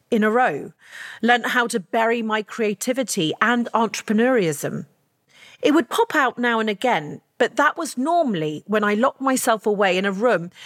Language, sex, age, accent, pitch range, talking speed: English, female, 40-59, British, 205-255 Hz, 170 wpm